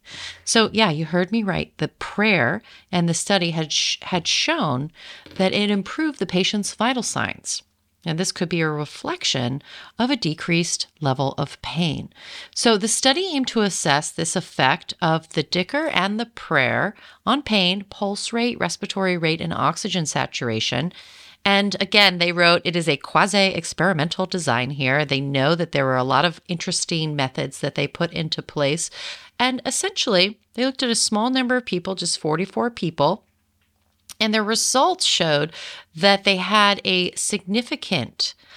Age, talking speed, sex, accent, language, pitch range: 30-49, 160 wpm, female, American, English, 155-205 Hz